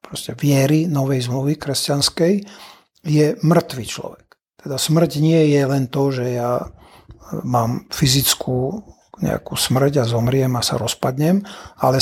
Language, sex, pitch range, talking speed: Slovak, male, 140-165 Hz, 125 wpm